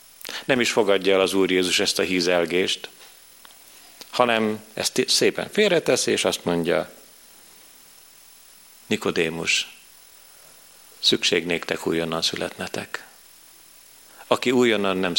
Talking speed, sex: 95 wpm, male